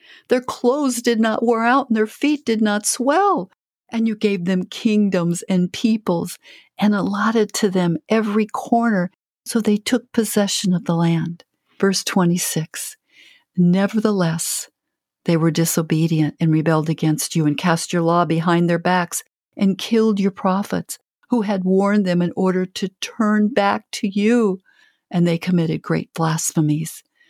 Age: 50-69